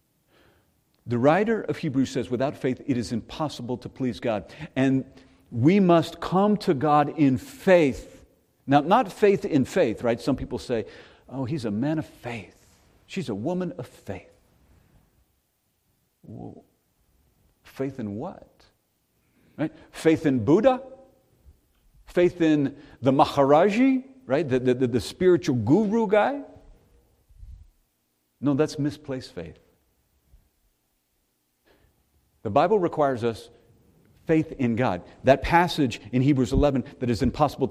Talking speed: 125 wpm